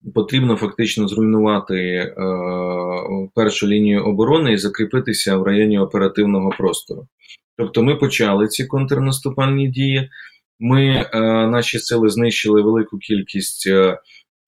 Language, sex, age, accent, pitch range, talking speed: Ukrainian, male, 20-39, native, 105-120 Hz, 110 wpm